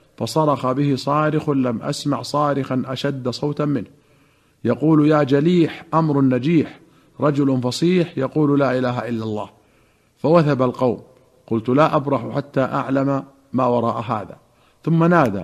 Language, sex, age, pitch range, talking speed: Arabic, male, 50-69, 120-145 Hz, 130 wpm